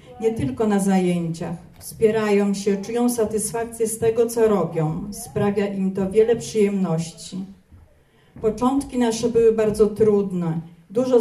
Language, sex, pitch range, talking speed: Polish, female, 185-220 Hz, 125 wpm